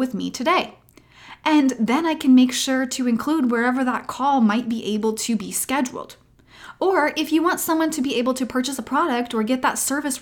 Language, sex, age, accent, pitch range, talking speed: English, female, 20-39, American, 225-290 Hz, 205 wpm